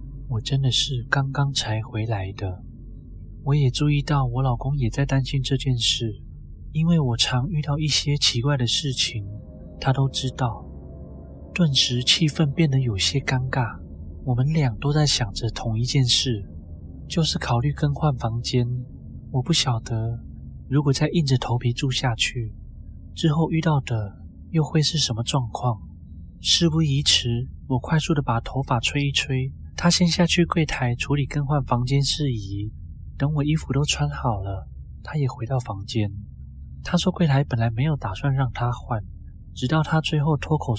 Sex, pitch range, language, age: male, 105-145 Hz, Chinese, 20-39